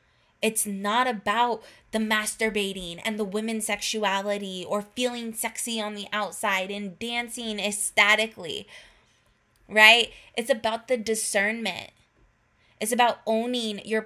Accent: American